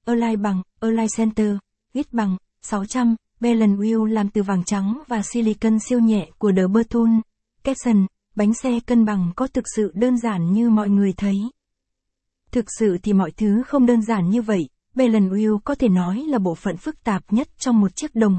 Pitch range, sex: 200-235 Hz, female